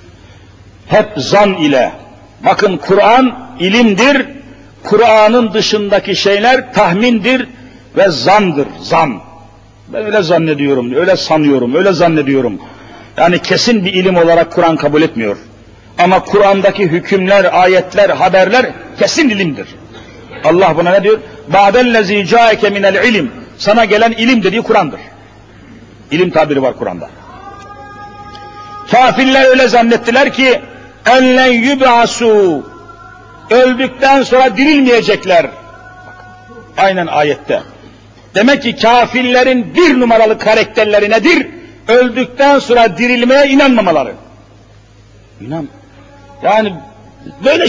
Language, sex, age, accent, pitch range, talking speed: Turkish, male, 50-69, native, 175-255 Hz, 95 wpm